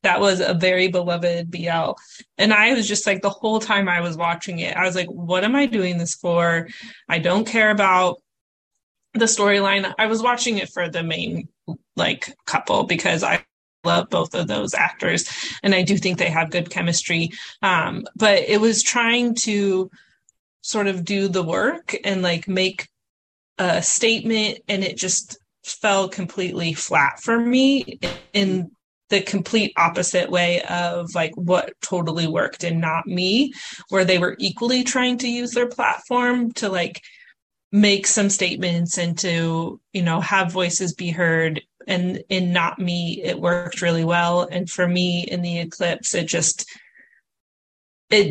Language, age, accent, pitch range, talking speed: English, 20-39, American, 175-210 Hz, 165 wpm